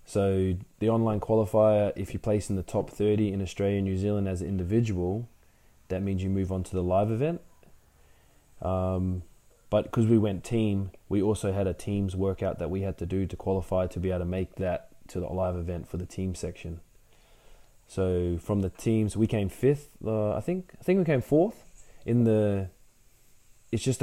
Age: 20-39